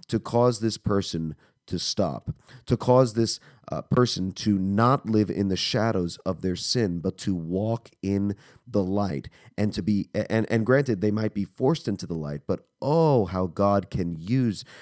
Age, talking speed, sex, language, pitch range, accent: 40-59, 170 wpm, male, English, 90-115 Hz, American